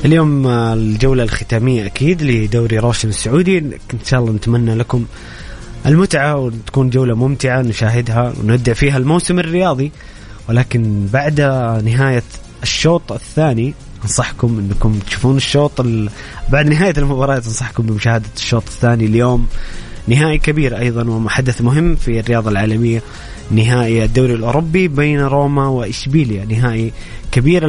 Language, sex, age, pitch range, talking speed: Arabic, male, 20-39, 115-145 Hz, 115 wpm